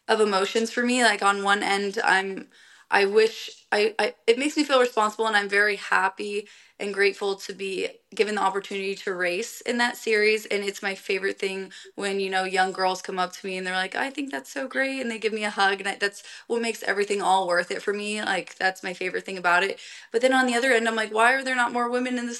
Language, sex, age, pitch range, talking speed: English, female, 20-39, 195-230 Hz, 255 wpm